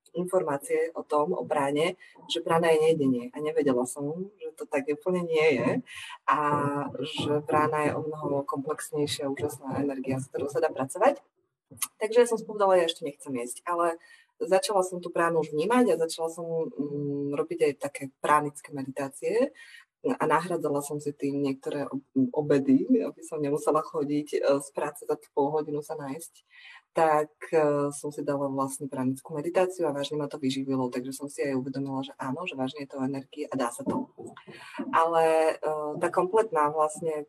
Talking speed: 170 wpm